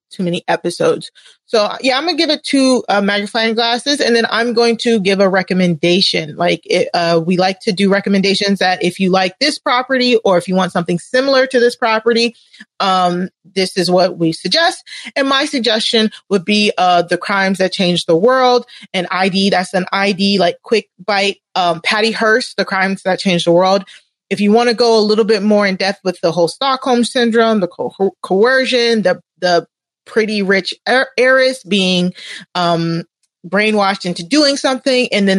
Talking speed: 190 wpm